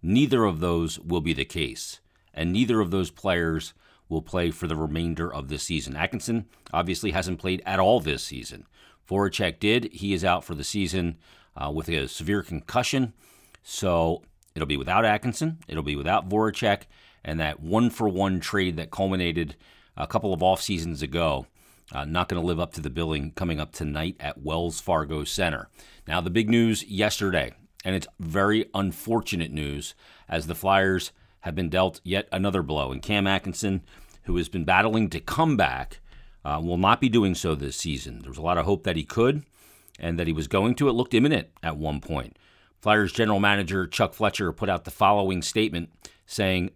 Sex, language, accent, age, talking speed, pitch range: male, English, American, 40-59, 185 wpm, 80-100 Hz